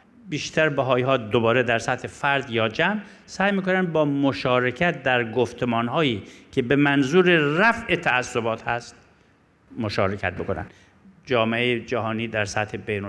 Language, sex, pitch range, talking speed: Persian, male, 120-170 Hz, 135 wpm